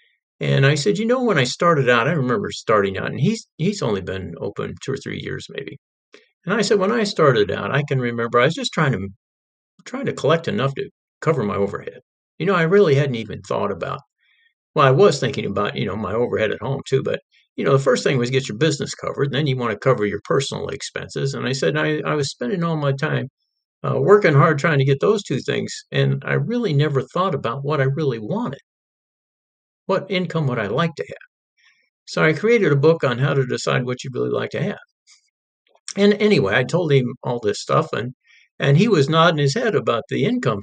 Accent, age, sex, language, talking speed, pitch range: American, 50-69, male, English, 230 wpm, 130-195 Hz